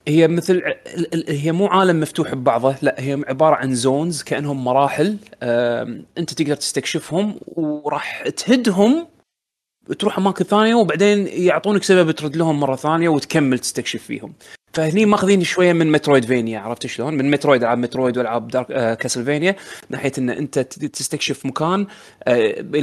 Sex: male